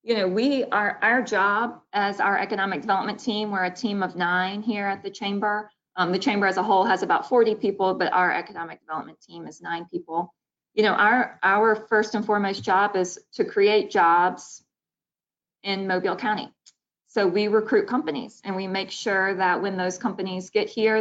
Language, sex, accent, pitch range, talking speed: English, female, American, 185-215 Hz, 190 wpm